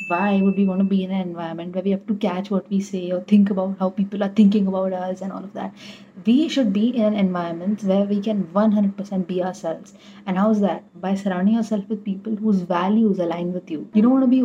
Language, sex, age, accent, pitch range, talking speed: English, female, 30-49, Indian, 190-215 Hz, 250 wpm